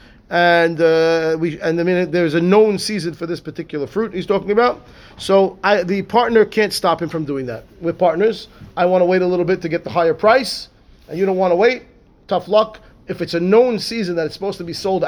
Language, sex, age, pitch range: English, male, 40-59, 165-215 Hz